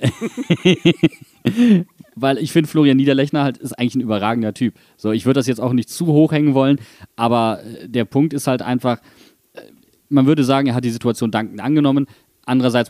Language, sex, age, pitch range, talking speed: German, male, 30-49, 115-150 Hz, 175 wpm